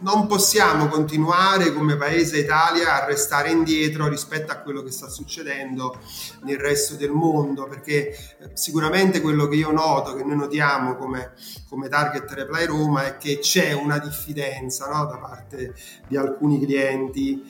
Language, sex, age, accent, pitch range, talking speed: Italian, male, 30-49, native, 140-165 Hz, 145 wpm